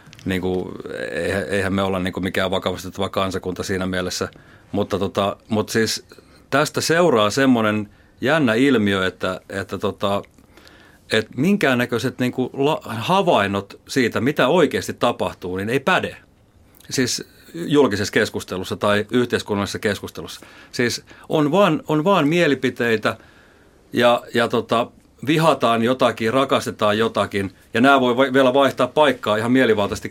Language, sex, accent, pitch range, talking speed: Finnish, male, native, 100-130 Hz, 120 wpm